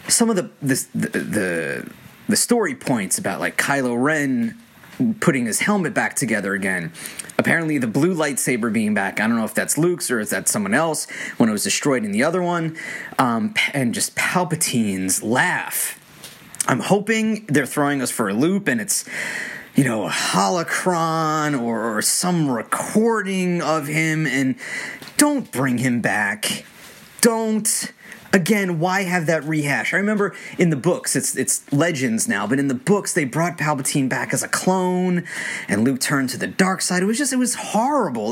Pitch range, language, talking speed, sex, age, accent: 140-215 Hz, English, 175 wpm, male, 30-49, American